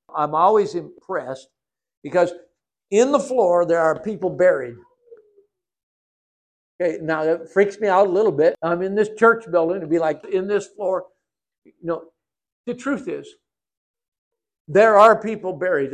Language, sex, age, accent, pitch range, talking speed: English, male, 60-79, American, 155-240 Hz, 155 wpm